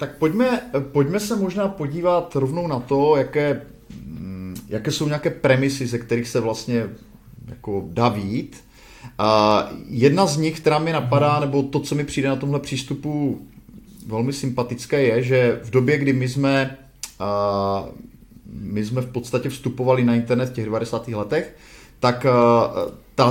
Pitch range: 120-140 Hz